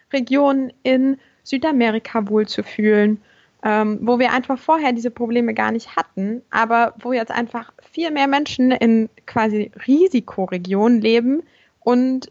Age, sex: 20-39, female